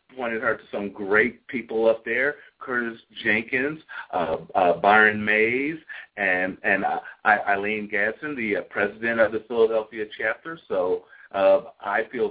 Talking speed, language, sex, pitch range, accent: 145 wpm, English, male, 105-150 Hz, American